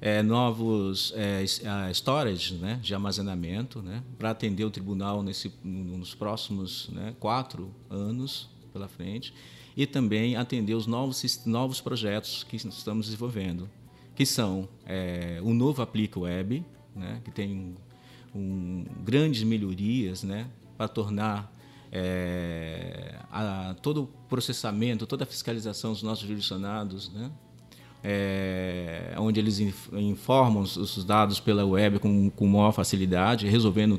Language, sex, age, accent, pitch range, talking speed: Portuguese, male, 50-69, Brazilian, 100-115 Hz, 130 wpm